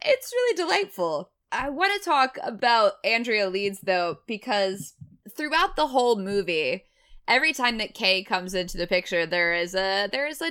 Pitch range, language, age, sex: 175-230 Hz, English, 20-39, female